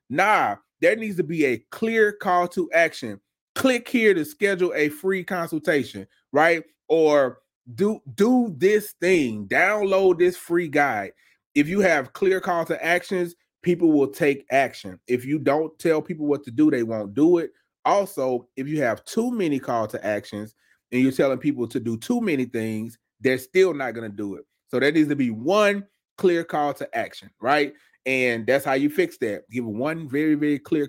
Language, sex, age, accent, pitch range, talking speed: English, male, 30-49, American, 135-195 Hz, 185 wpm